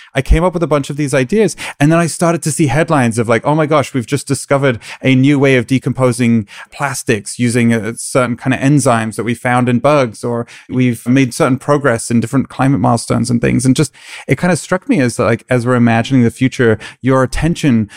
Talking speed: 225 wpm